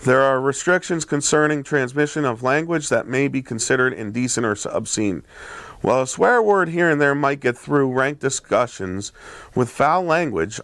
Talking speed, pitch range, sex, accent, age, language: 165 wpm, 115-150 Hz, male, American, 40-59, English